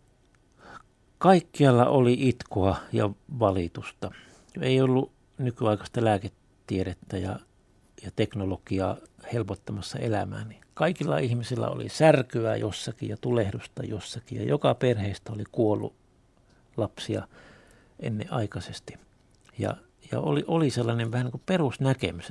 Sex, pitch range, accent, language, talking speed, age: male, 100-130 Hz, native, Finnish, 105 wpm, 60-79